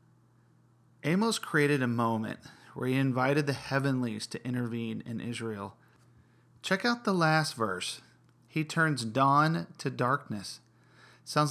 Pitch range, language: 120-145 Hz, English